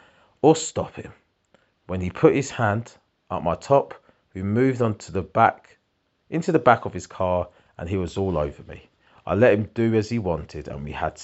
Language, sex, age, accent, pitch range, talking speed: English, male, 30-49, British, 95-130 Hz, 205 wpm